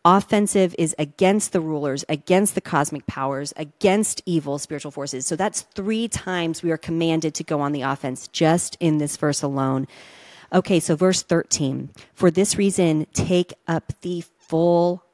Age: 40-59